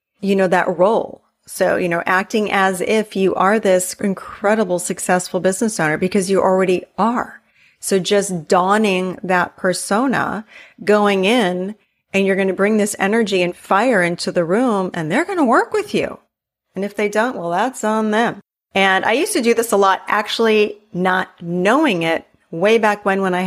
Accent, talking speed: American, 185 wpm